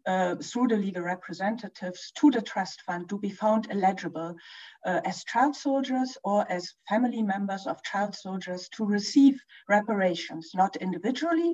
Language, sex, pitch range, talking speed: English, female, 180-230 Hz, 150 wpm